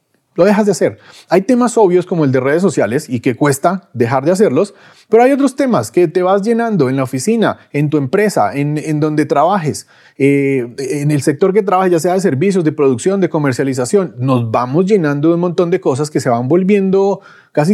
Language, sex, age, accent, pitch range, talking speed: Spanish, male, 30-49, Colombian, 140-195 Hz, 215 wpm